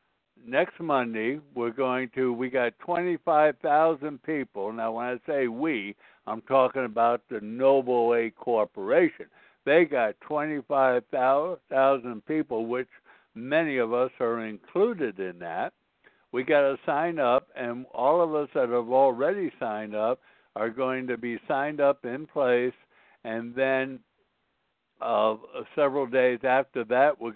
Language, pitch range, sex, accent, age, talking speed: English, 115-135 Hz, male, American, 60-79, 140 wpm